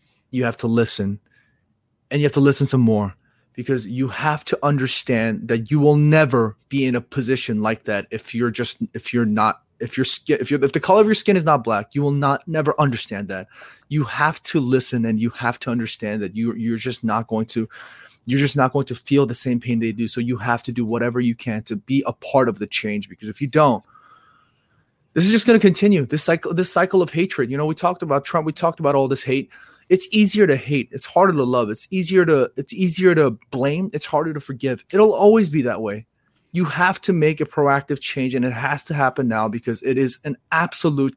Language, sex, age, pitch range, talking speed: English, male, 20-39, 120-155 Hz, 240 wpm